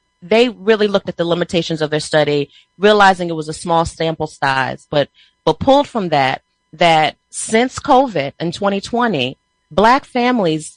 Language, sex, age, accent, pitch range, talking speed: English, female, 30-49, American, 155-190 Hz, 155 wpm